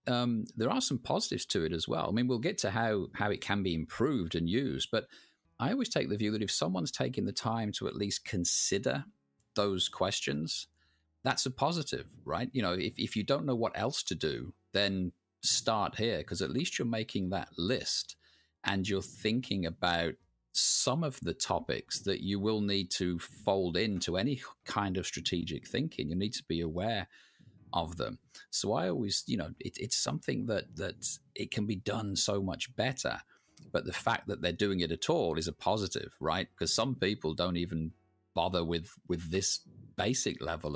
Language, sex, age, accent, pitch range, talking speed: English, male, 40-59, British, 85-110 Hz, 195 wpm